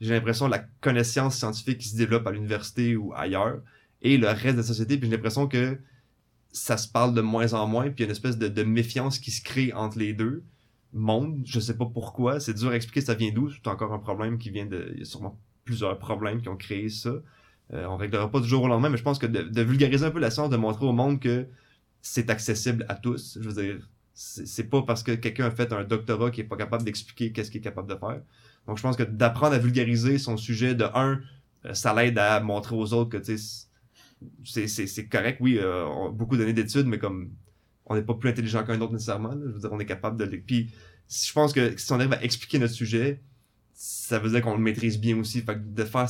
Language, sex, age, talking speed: French, male, 20-39, 265 wpm